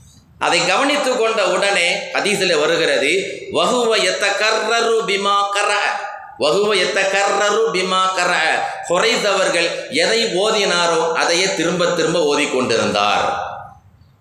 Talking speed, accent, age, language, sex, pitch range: 45 wpm, native, 30-49, Tamil, male, 155-215 Hz